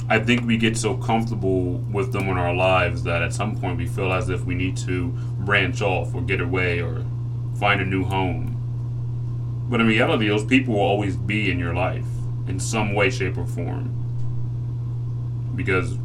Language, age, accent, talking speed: English, 30-49, American, 185 wpm